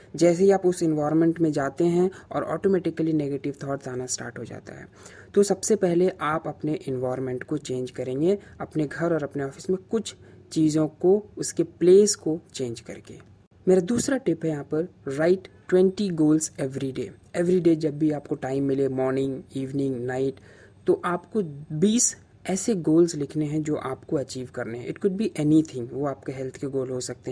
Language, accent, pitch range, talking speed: Hindi, native, 130-175 Hz, 185 wpm